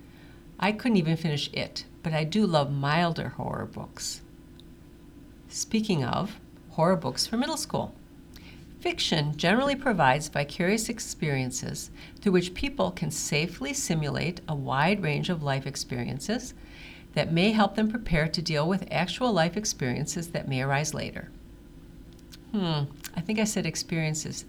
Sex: female